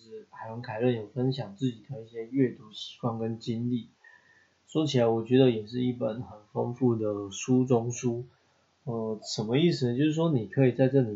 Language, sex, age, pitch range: Chinese, male, 20-39, 110-135 Hz